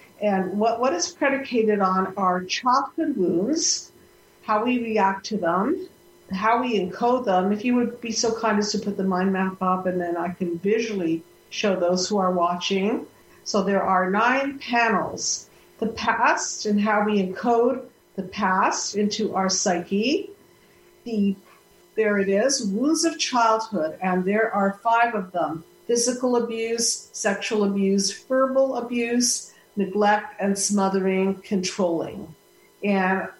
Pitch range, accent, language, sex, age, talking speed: 185-225 Hz, American, English, female, 50-69, 145 wpm